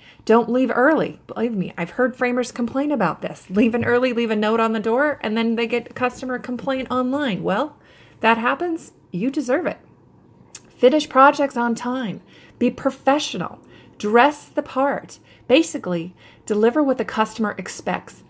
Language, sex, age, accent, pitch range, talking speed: English, female, 30-49, American, 210-265 Hz, 155 wpm